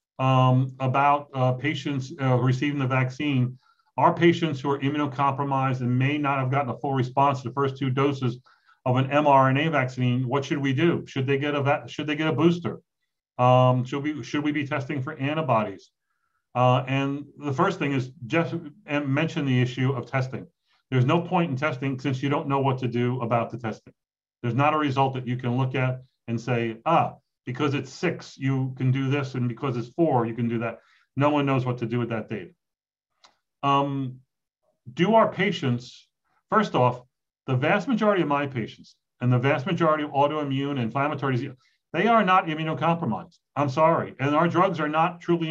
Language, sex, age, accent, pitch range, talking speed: English, male, 40-59, American, 130-155 Hz, 195 wpm